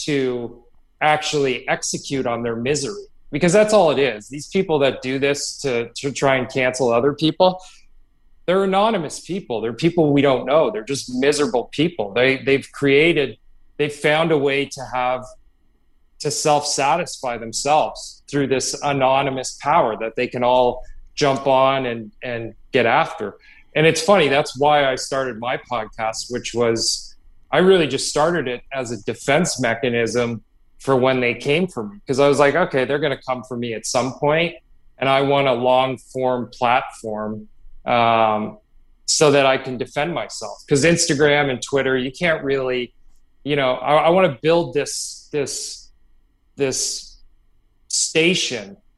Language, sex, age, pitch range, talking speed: English, male, 30-49, 120-150 Hz, 165 wpm